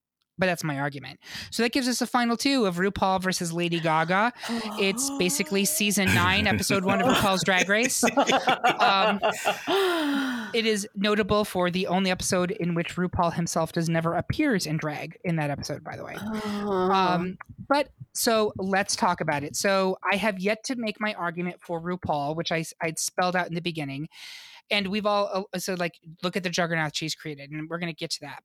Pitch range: 165-210 Hz